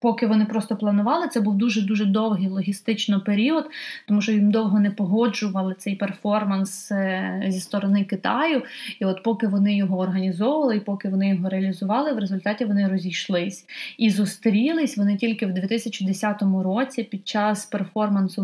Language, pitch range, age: Ukrainian, 195-230 Hz, 20-39